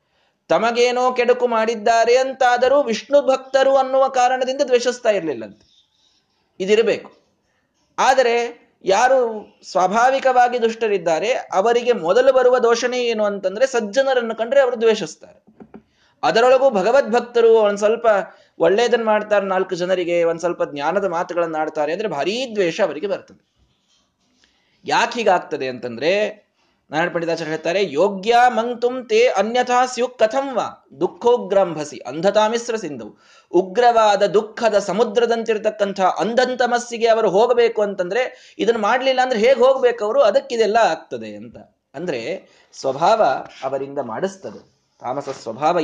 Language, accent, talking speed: Kannada, native, 105 wpm